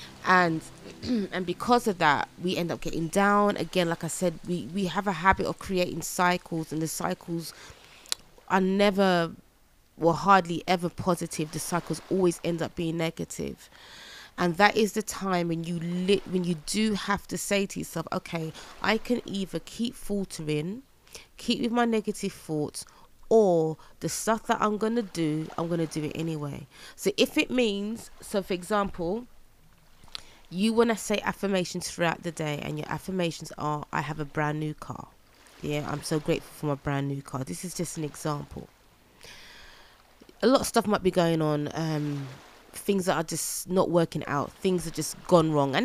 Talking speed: 180 wpm